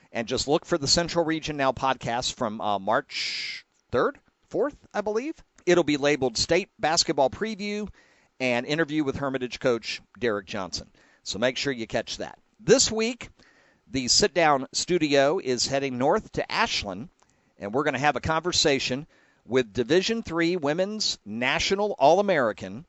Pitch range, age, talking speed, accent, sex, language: 125-170 Hz, 50-69, 150 wpm, American, male, English